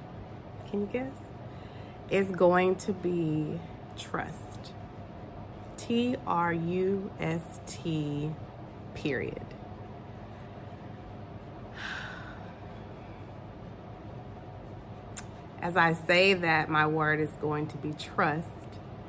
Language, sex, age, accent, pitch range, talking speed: English, female, 30-49, American, 105-160 Hz, 65 wpm